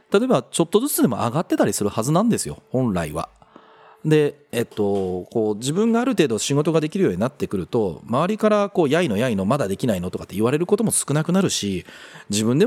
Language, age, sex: Japanese, 40-59, male